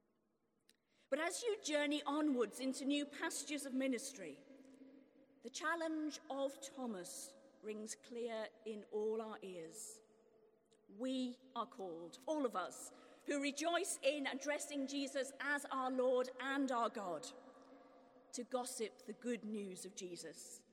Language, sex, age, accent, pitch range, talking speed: English, female, 40-59, British, 245-285 Hz, 125 wpm